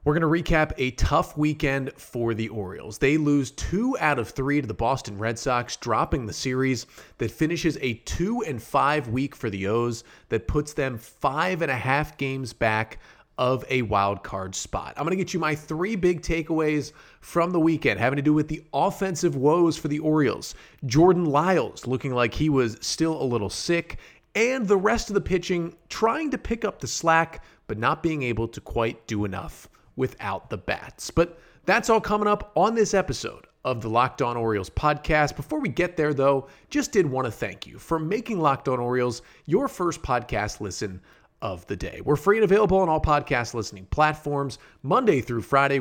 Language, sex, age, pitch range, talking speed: English, male, 30-49, 115-165 Hz, 200 wpm